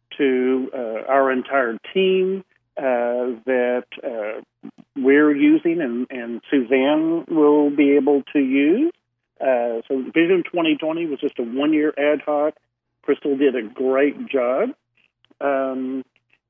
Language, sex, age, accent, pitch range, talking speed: English, male, 50-69, American, 125-155 Hz, 125 wpm